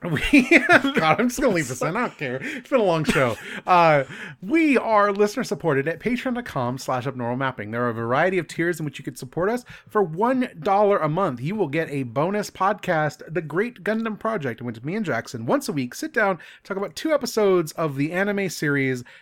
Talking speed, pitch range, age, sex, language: 220 wpm, 140-205 Hz, 30-49, male, English